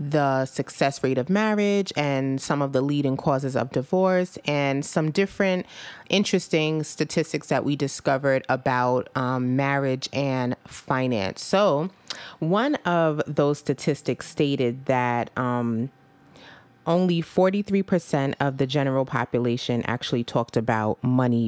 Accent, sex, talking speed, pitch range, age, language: American, female, 125 wpm, 130-160 Hz, 30-49, English